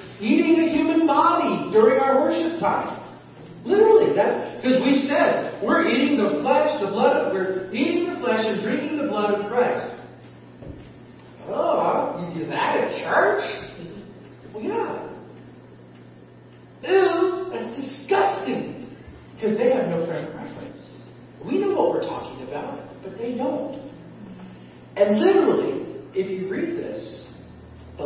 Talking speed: 135 wpm